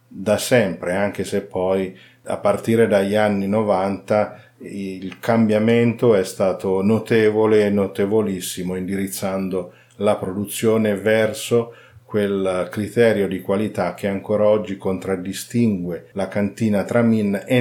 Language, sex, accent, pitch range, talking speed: Italian, male, native, 95-115 Hz, 110 wpm